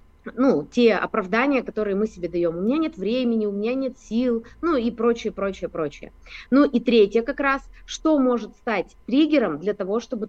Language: Russian